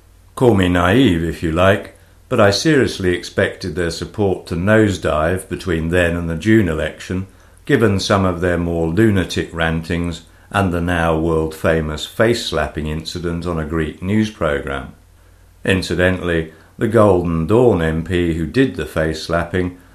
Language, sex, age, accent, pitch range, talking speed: English, male, 60-79, British, 85-95 Hz, 140 wpm